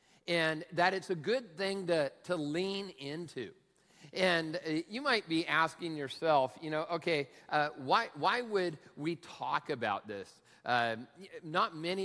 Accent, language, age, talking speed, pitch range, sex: American, English, 50-69, 150 wpm, 130-170 Hz, male